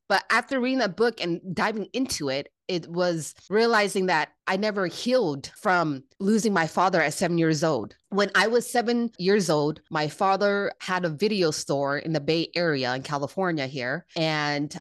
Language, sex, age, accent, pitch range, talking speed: English, female, 20-39, American, 150-185 Hz, 180 wpm